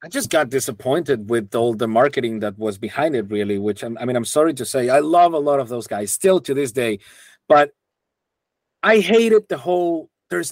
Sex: male